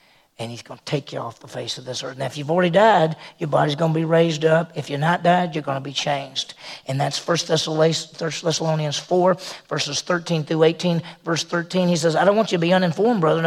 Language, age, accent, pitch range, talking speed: English, 40-59, American, 160-215 Hz, 245 wpm